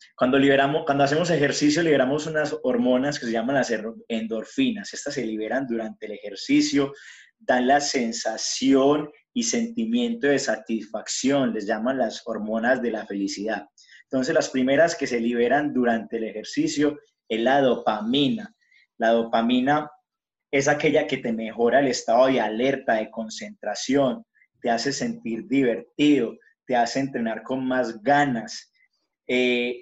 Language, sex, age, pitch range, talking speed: English, male, 30-49, 115-150 Hz, 140 wpm